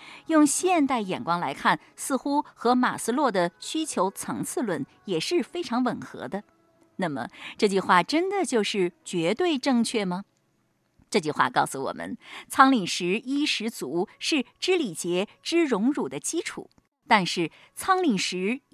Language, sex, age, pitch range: Chinese, female, 50-69, 190-285 Hz